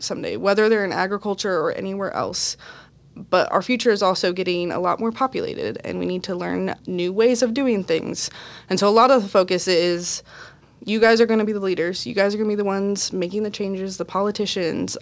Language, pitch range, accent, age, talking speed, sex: English, 175-220 Hz, American, 20-39, 230 wpm, female